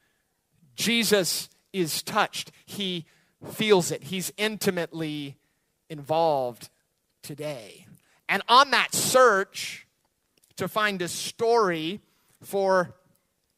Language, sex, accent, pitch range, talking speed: English, male, American, 150-190 Hz, 85 wpm